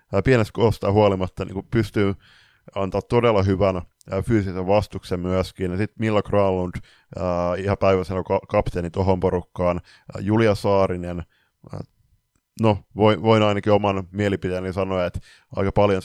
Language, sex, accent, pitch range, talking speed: Finnish, male, native, 90-105 Hz, 110 wpm